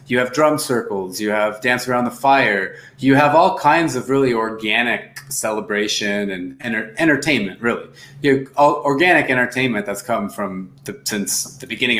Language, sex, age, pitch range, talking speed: English, male, 30-49, 110-140 Hz, 150 wpm